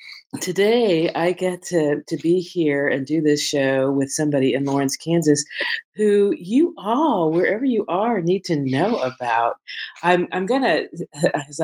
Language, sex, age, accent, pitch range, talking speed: English, female, 50-69, American, 135-185 Hz, 155 wpm